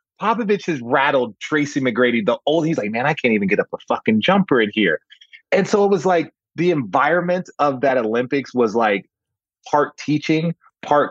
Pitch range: 110-150 Hz